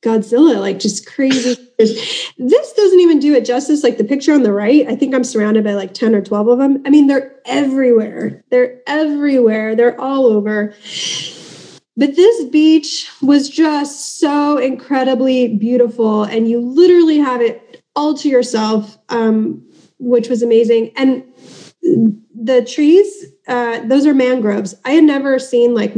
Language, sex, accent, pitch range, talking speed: English, female, American, 215-270 Hz, 155 wpm